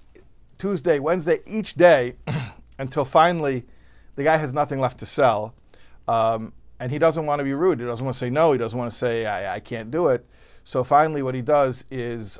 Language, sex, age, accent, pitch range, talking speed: English, male, 50-69, American, 110-155 Hz, 210 wpm